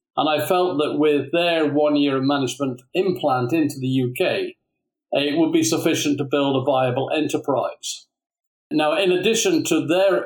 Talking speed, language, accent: 165 wpm, English, British